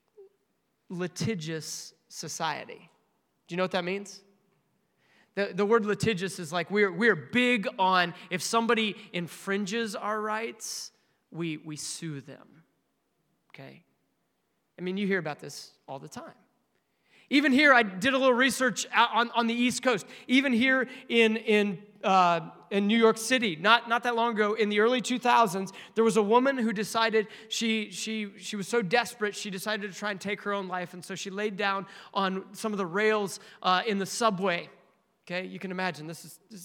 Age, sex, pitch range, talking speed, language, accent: 30-49, male, 185-225 Hz, 180 wpm, English, American